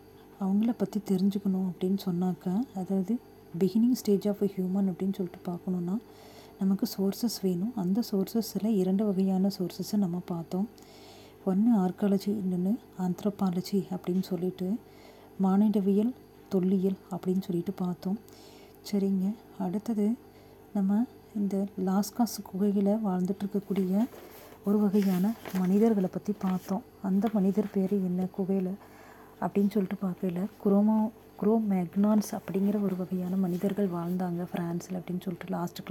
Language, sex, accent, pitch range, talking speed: Tamil, female, native, 185-210 Hz, 115 wpm